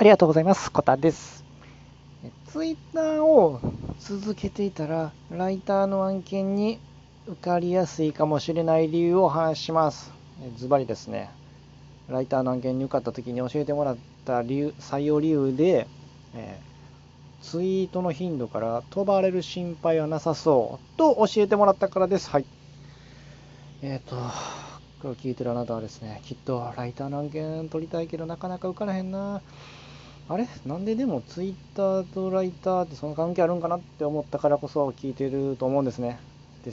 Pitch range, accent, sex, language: 120-175 Hz, native, male, Japanese